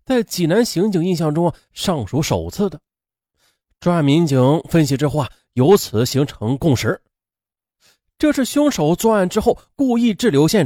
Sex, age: male, 30-49